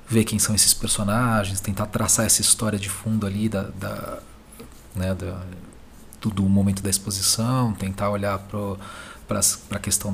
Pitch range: 95-110 Hz